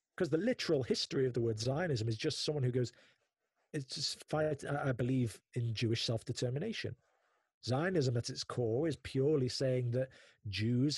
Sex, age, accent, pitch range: male, 40-59, British, 120-155 Hz